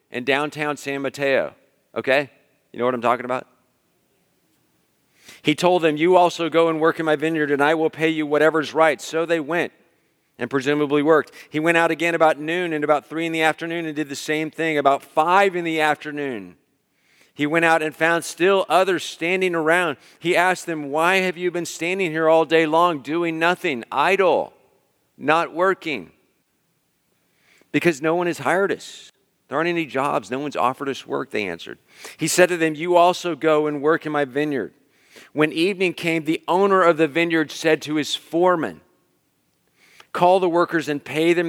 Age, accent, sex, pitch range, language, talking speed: 50-69, American, male, 145-165 Hz, English, 190 wpm